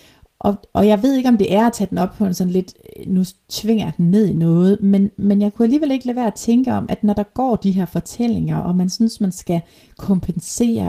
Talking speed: 255 wpm